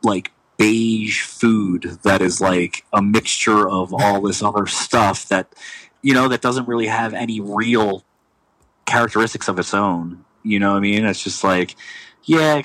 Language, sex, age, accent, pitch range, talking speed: English, male, 30-49, American, 100-120 Hz, 170 wpm